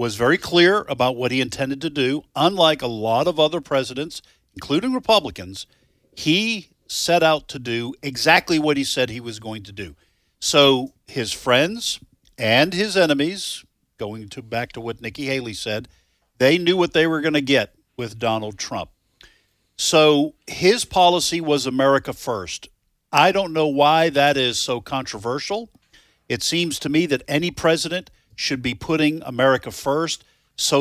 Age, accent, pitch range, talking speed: 50-69, American, 125-160 Hz, 160 wpm